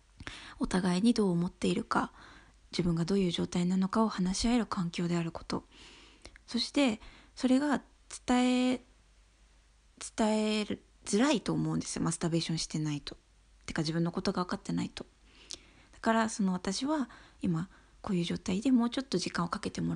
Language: Japanese